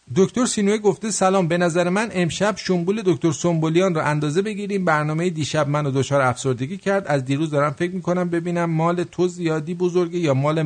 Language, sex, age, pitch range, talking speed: English, male, 50-69, 135-185 Hz, 180 wpm